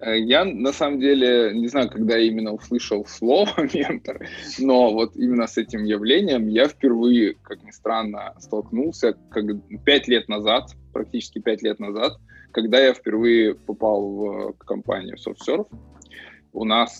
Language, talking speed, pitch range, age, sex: Russian, 145 wpm, 105-130 Hz, 20-39, male